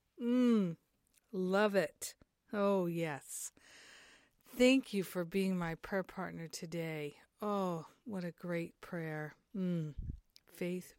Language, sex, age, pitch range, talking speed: English, female, 50-69, 170-210 Hz, 105 wpm